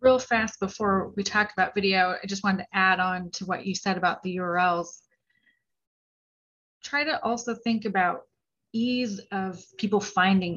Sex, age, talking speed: female, 30-49, 165 wpm